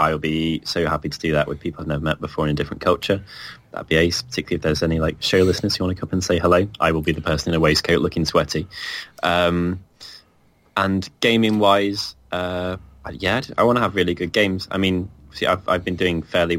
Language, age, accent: English, 20-39, British